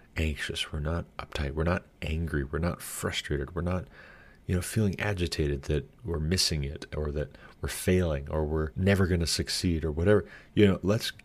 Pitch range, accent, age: 75-95 Hz, American, 30-49